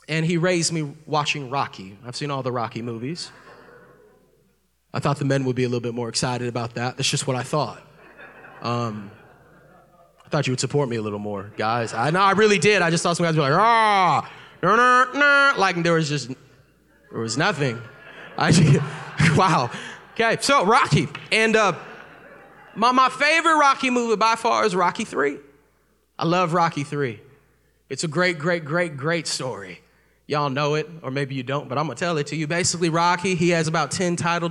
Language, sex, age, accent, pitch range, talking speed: English, male, 20-39, American, 140-170 Hz, 200 wpm